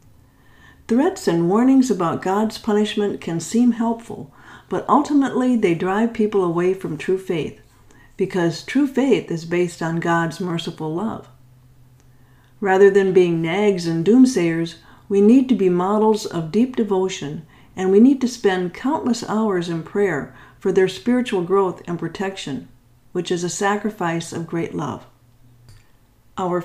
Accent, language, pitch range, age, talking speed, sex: American, English, 160-205 Hz, 50-69, 145 wpm, female